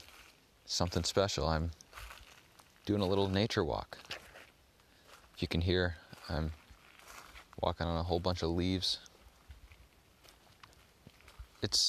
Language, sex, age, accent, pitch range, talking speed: English, male, 20-39, American, 80-90 Hz, 105 wpm